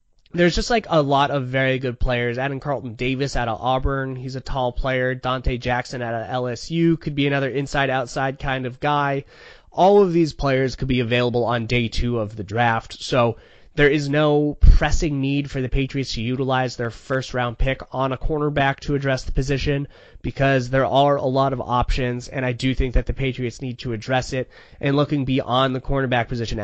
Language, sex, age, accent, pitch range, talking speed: English, male, 20-39, American, 125-140 Hz, 200 wpm